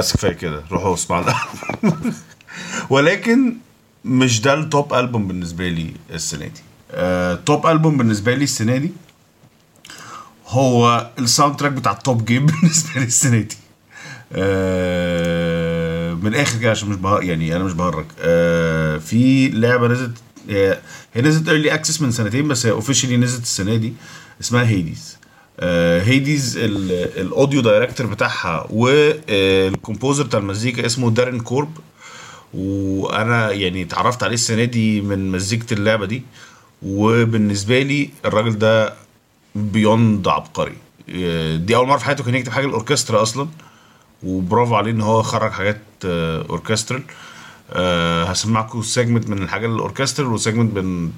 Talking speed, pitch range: 125 wpm, 95-130 Hz